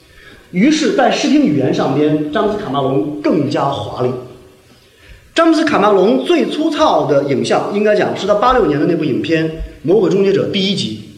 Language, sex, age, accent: Chinese, male, 30-49, native